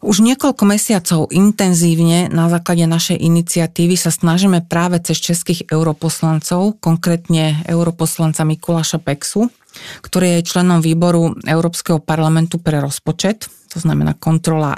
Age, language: 40-59, Slovak